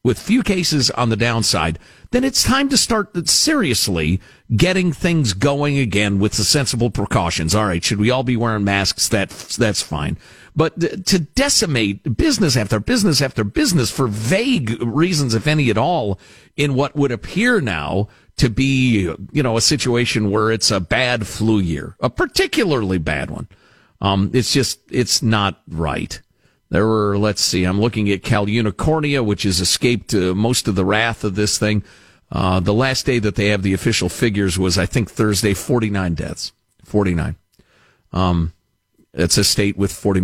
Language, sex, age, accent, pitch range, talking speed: English, male, 50-69, American, 95-135 Hz, 170 wpm